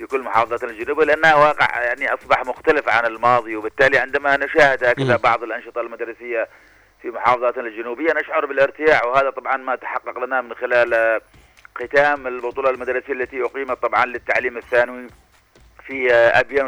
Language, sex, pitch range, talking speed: Arabic, male, 120-130 Hz, 135 wpm